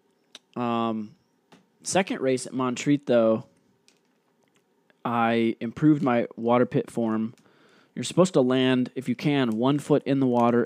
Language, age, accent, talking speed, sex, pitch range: English, 20-39, American, 135 wpm, male, 115-130 Hz